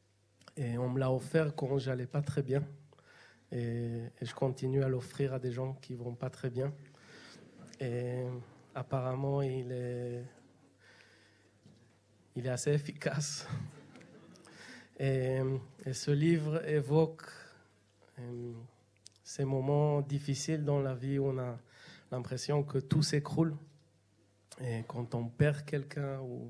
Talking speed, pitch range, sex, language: 130 wpm, 120-145 Hz, male, French